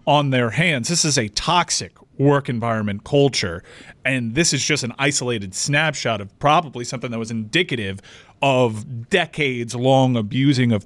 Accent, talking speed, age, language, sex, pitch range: American, 155 wpm, 30-49, English, male, 120-155 Hz